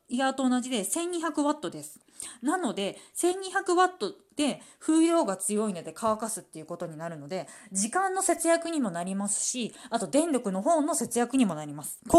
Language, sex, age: Japanese, female, 20-39